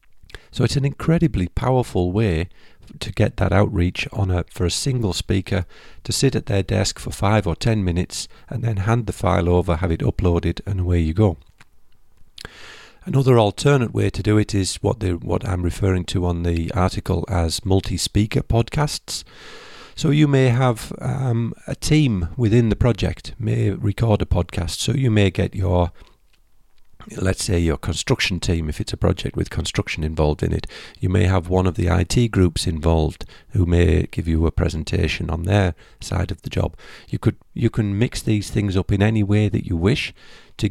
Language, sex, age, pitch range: English, male, 50-69, 90-115 Hz